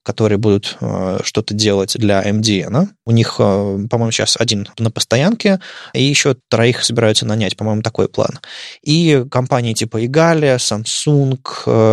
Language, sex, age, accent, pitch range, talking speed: Russian, male, 20-39, native, 110-125 Hz, 140 wpm